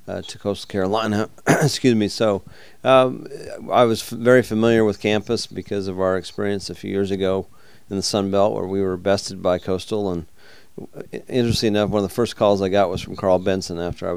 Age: 40-59